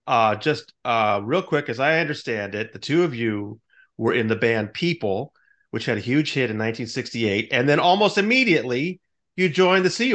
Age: 30-49